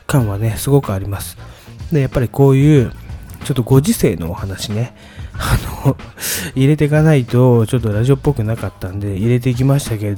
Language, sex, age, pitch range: Japanese, male, 20-39, 110-150 Hz